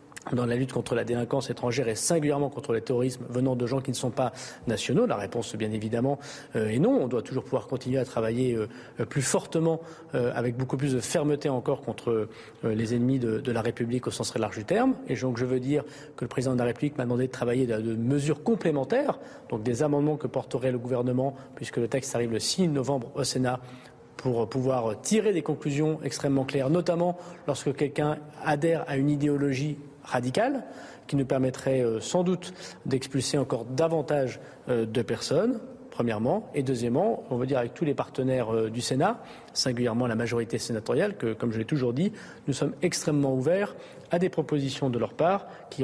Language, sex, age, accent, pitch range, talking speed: French, male, 40-59, French, 120-150 Hz, 200 wpm